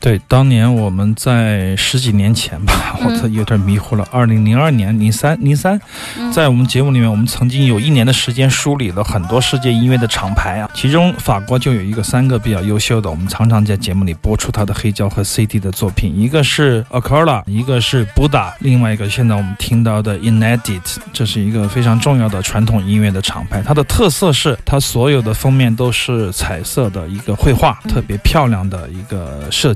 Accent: native